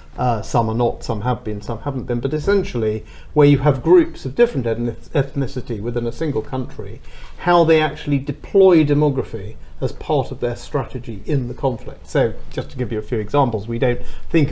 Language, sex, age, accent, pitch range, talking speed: English, male, 40-59, British, 120-155 Hz, 195 wpm